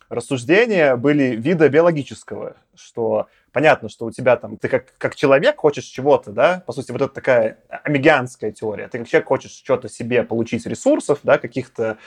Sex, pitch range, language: male, 120-160 Hz, Russian